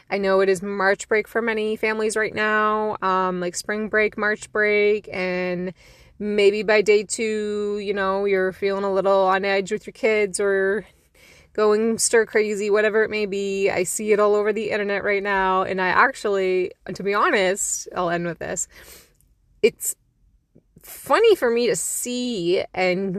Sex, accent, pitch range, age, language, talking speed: female, American, 185-220 Hz, 20-39, English, 175 wpm